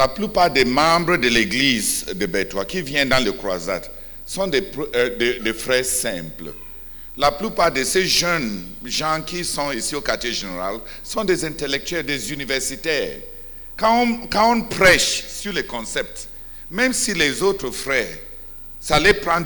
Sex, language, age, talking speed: male, English, 60-79, 165 wpm